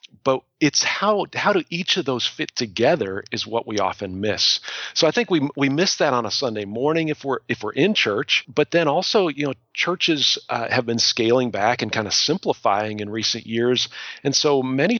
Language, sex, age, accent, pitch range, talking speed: English, male, 40-59, American, 105-140 Hz, 210 wpm